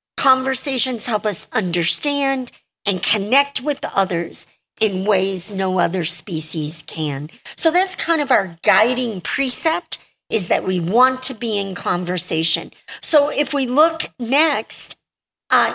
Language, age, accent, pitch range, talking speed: English, 50-69, American, 200-270 Hz, 135 wpm